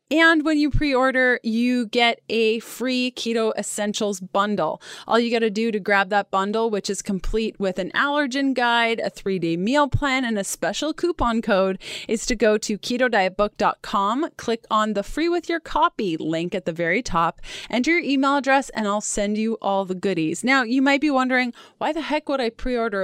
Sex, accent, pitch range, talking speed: female, American, 205-260 Hz, 195 wpm